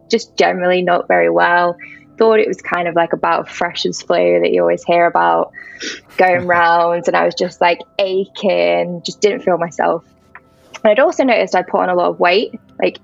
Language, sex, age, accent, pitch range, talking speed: English, female, 10-29, British, 165-200 Hz, 200 wpm